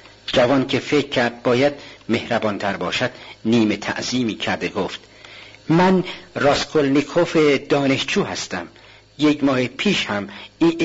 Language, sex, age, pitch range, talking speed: Persian, male, 50-69, 105-165 Hz, 110 wpm